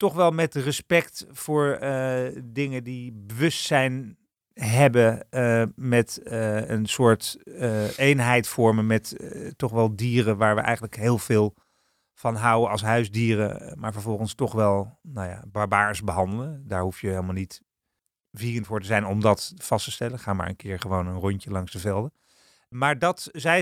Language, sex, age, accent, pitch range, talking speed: Dutch, male, 40-59, Dutch, 110-135 Hz, 170 wpm